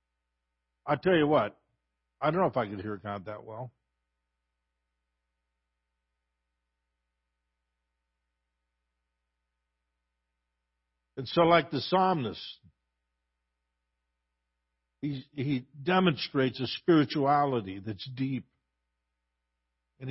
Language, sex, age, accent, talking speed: English, male, 50-69, American, 80 wpm